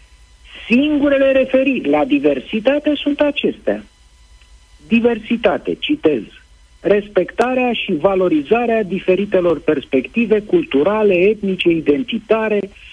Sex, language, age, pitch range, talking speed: male, Romanian, 50-69, 160-235 Hz, 75 wpm